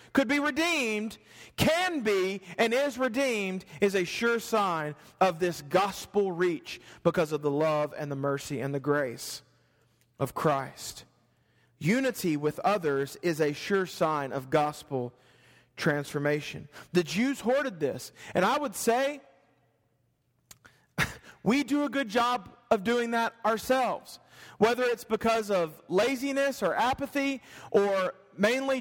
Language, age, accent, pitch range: English, 40-59, American, 165-275 Hz